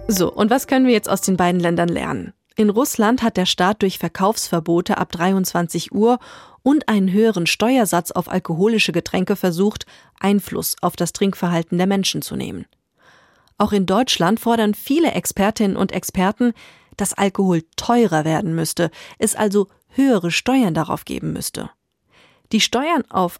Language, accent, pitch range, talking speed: German, German, 180-220 Hz, 155 wpm